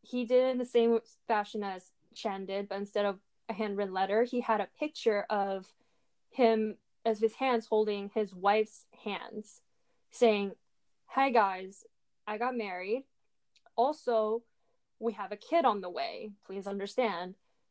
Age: 10-29